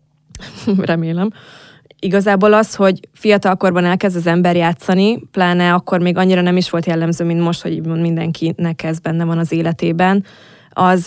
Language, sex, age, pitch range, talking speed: Hungarian, female, 20-39, 165-185 Hz, 145 wpm